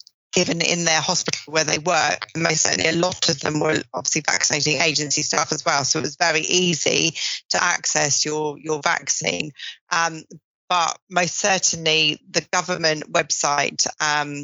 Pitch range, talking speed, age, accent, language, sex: 155-175 Hz, 160 wpm, 30-49, British, English, female